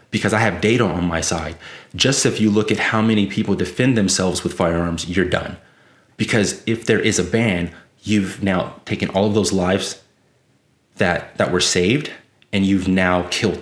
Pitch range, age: 90-110 Hz, 30-49